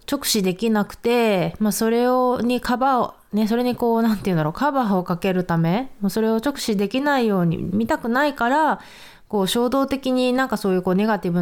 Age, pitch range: 20-39, 185-260 Hz